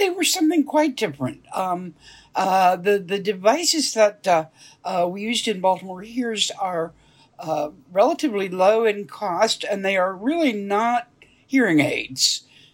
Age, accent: 60-79, American